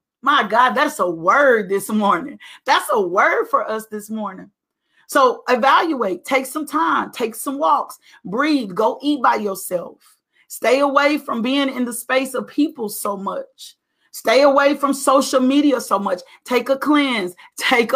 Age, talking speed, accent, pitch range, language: 40-59, 165 wpm, American, 225-290 Hz, English